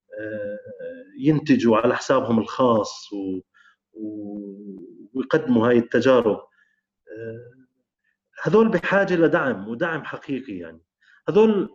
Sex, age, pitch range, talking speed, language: male, 30-49, 115-155 Hz, 75 wpm, Arabic